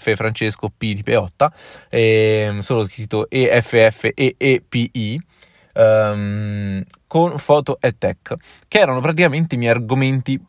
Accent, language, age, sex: native, Italian, 20-39, male